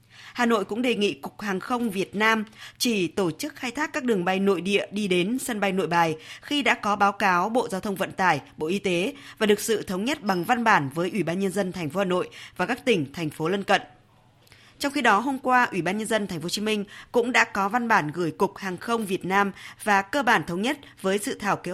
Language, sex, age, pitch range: Vietnamese, female, 20-39, 175-220 Hz